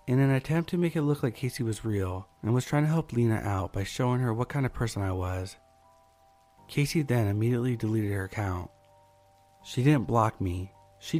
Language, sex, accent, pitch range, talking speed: English, male, American, 95-135 Hz, 205 wpm